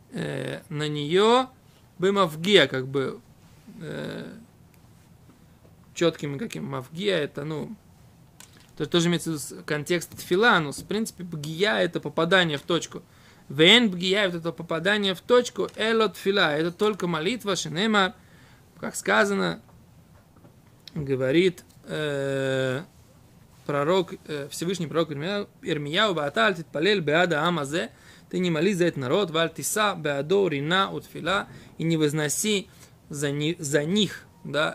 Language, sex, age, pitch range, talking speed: Russian, male, 20-39, 155-200 Hz, 115 wpm